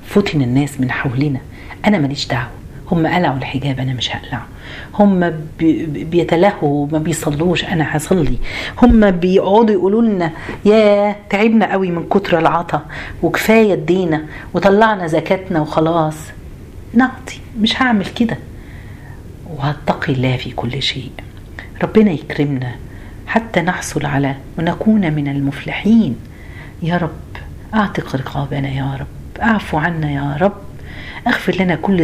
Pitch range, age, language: 140-190 Hz, 40-59, Arabic